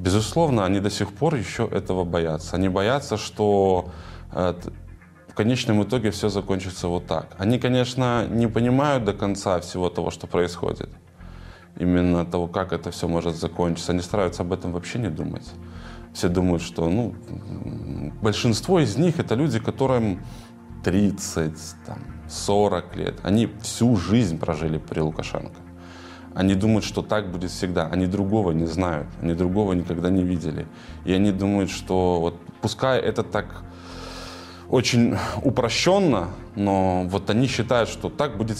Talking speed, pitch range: 145 wpm, 85-115 Hz